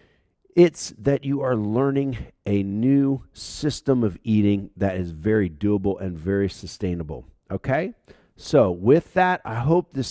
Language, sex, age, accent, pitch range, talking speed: English, male, 50-69, American, 90-125 Hz, 140 wpm